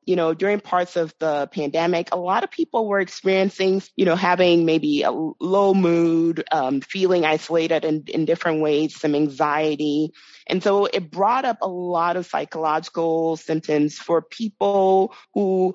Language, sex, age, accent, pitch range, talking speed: English, female, 30-49, American, 155-185 Hz, 160 wpm